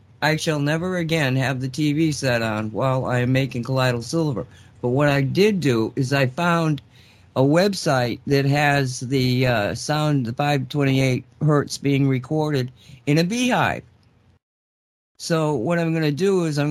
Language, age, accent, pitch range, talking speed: English, 50-69, American, 125-165 Hz, 165 wpm